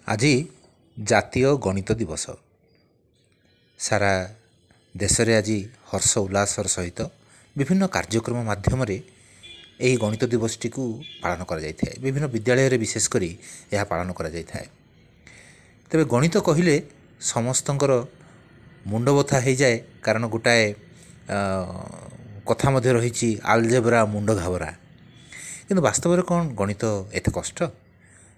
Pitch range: 100-130 Hz